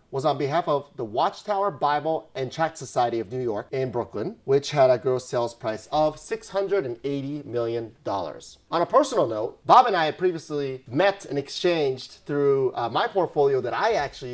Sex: male